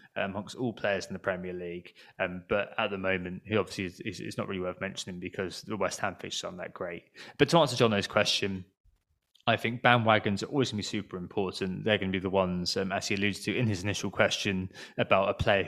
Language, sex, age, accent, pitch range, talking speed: English, male, 20-39, British, 90-110 Hz, 235 wpm